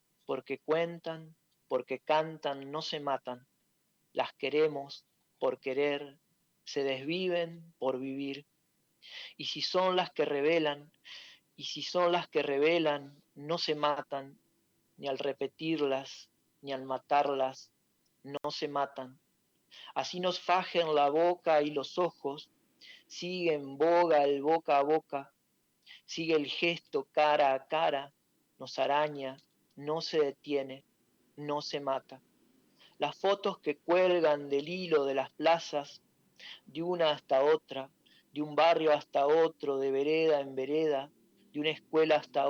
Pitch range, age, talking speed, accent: 135-160 Hz, 40-59, 130 wpm, Argentinian